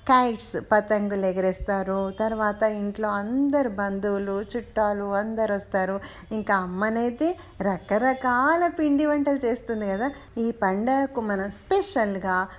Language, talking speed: Telugu, 90 wpm